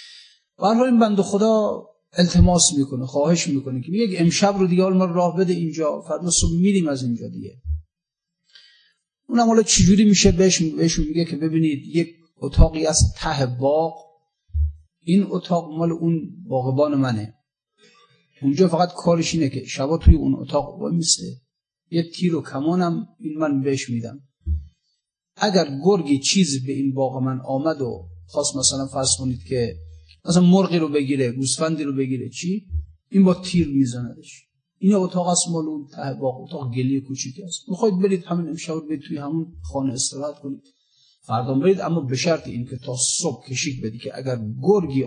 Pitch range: 130-180 Hz